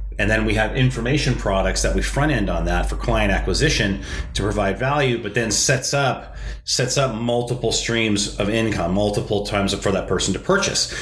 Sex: male